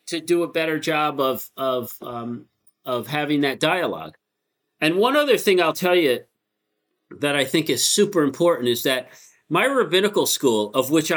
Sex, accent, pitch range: male, American, 135-170 Hz